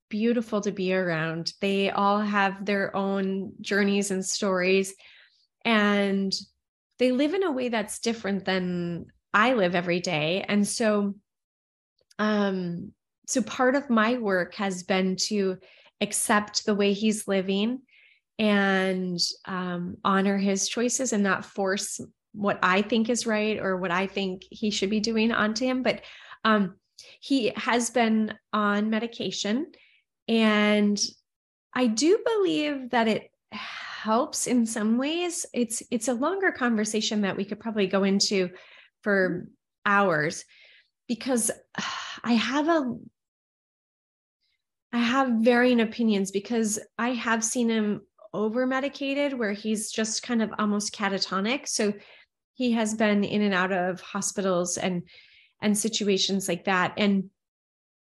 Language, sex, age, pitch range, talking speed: English, female, 30-49, 195-235 Hz, 135 wpm